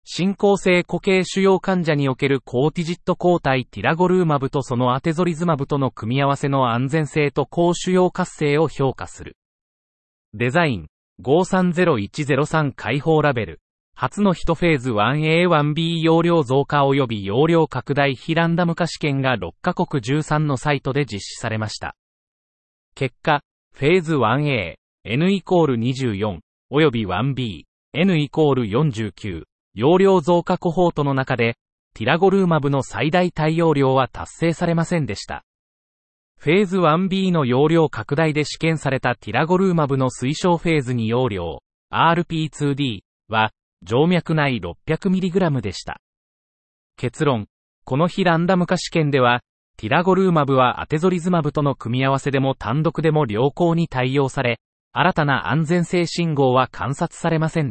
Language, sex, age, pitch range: Japanese, male, 30-49, 125-170 Hz